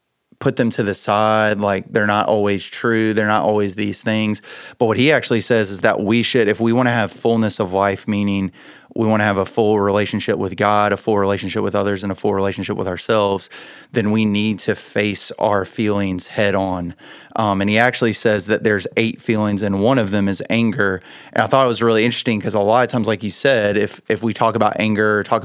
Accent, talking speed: American, 235 wpm